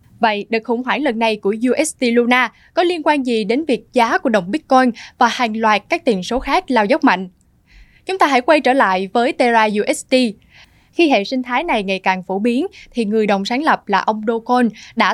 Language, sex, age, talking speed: Vietnamese, female, 10-29, 220 wpm